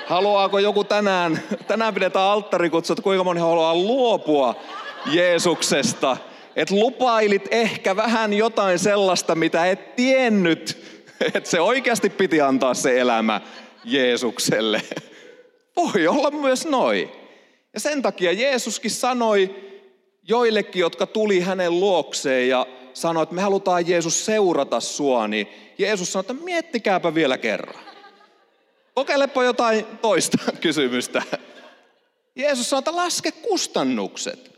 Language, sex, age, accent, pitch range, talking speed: Finnish, male, 30-49, native, 155-235 Hz, 115 wpm